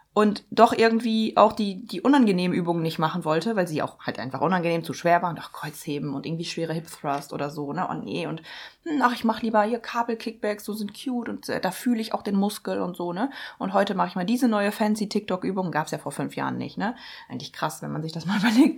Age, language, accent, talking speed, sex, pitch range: 20-39, German, German, 260 wpm, female, 170-225 Hz